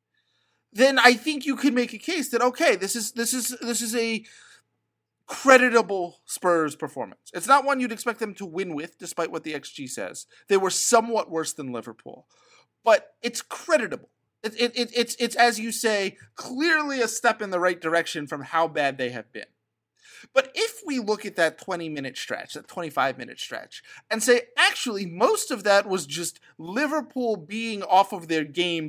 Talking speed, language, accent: 190 wpm, English, American